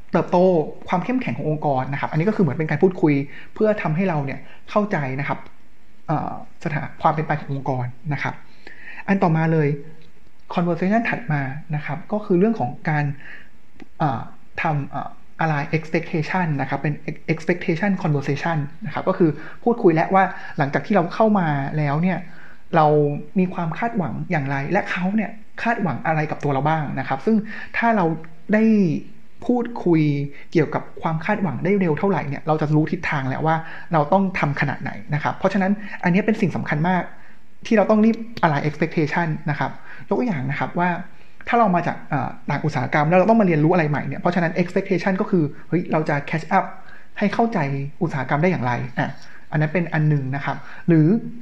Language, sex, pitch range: Thai, male, 150-190 Hz